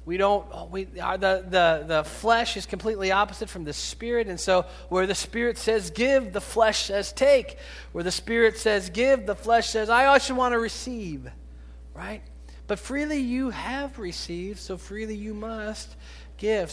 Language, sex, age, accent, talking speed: English, male, 40-59, American, 170 wpm